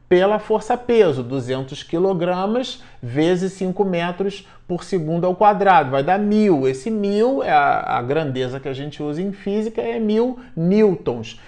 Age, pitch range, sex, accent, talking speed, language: 40-59, 165-230 Hz, male, Brazilian, 155 wpm, Portuguese